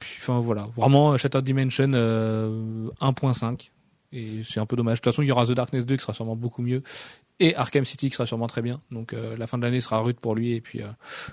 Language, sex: French, male